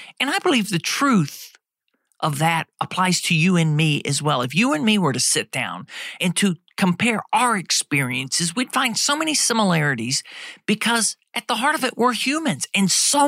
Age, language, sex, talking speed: 50-69, English, male, 190 wpm